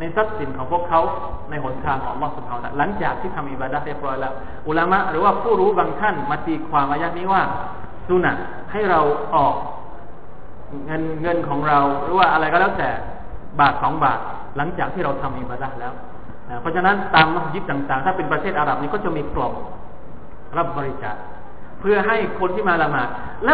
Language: Thai